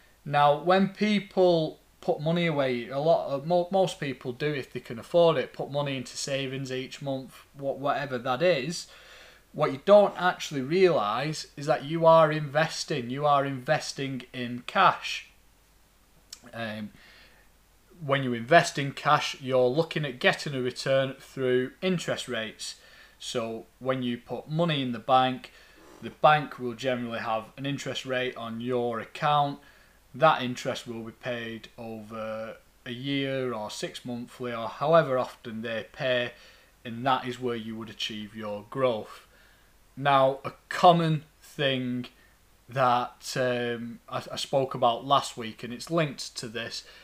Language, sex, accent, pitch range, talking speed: English, male, British, 120-150 Hz, 150 wpm